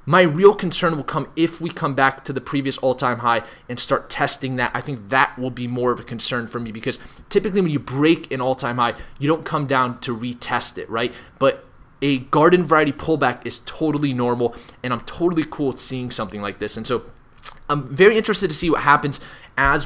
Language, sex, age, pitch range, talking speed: English, male, 20-39, 125-155 Hz, 220 wpm